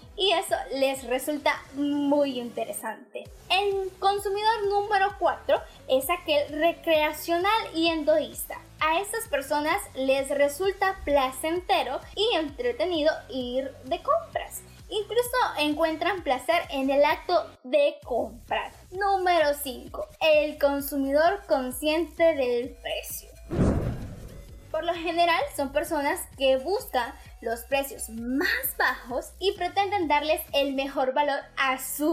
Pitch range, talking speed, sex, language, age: 275-345 Hz, 110 wpm, female, Spanish, 10-29